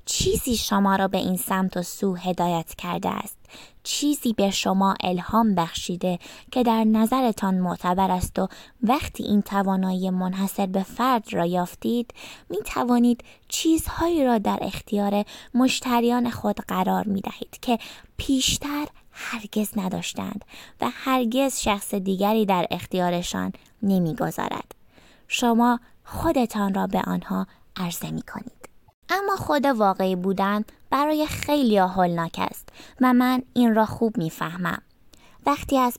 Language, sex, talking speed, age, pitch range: Persian, female, 130 wpm, 20-39, 195-245 Hz